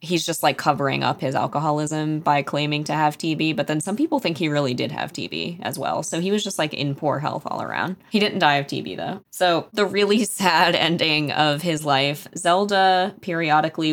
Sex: female